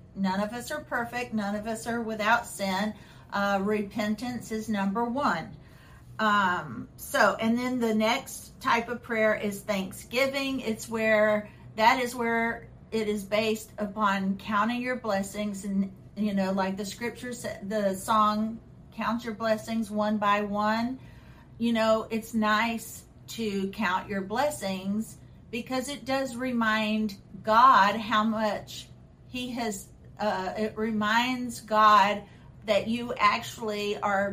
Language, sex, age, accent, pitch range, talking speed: English, female, 50-69, American, 200-230 Hz, 135 wpm